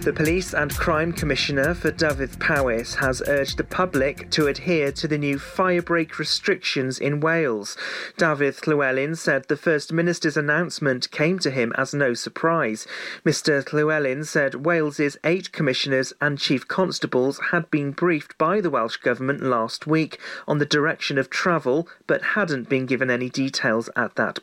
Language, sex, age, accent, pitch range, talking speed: English, male, 40-59, British, 135-165 Hz, 160 wpm